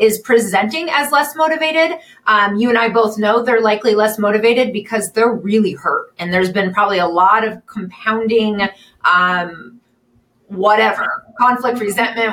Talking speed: 150 wpm